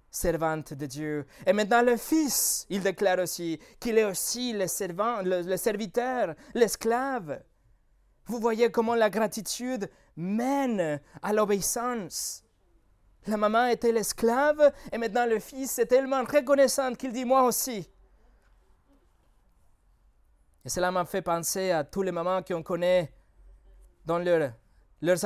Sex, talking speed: male, 140 wpm